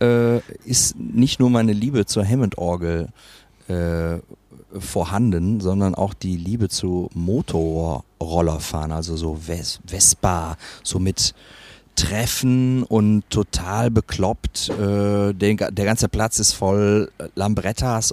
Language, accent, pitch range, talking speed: German, German, 95-115 Hz, 105 wpm